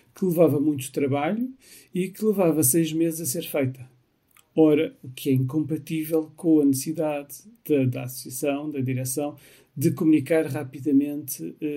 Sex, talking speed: male, 145 wpm